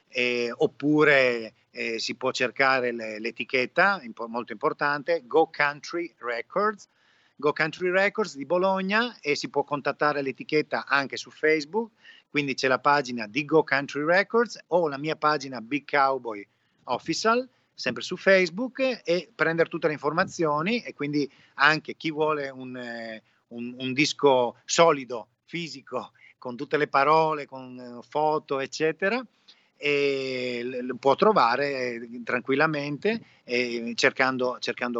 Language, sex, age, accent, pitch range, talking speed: Italian, male, 40-59, native, 125-170 Hz, 130 wpm